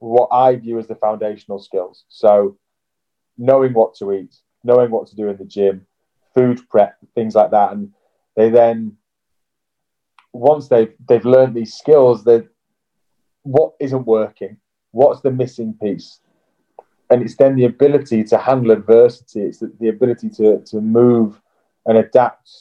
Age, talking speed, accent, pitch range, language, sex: 30-49, 155 wpm, British, 105-125 Hz, English, male